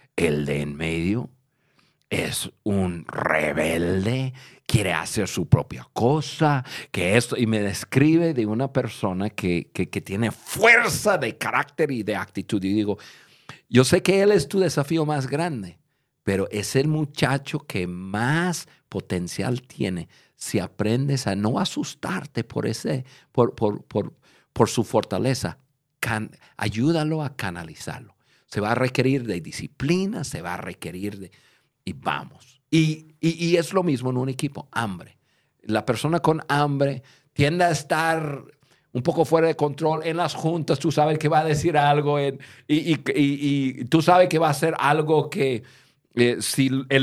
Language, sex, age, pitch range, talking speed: Spanish, male, 50-69, 110-155 Hz, 155 wpm